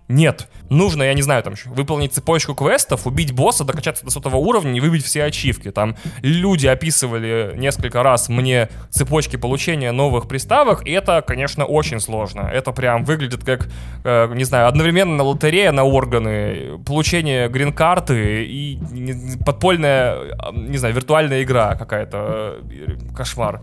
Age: 20-39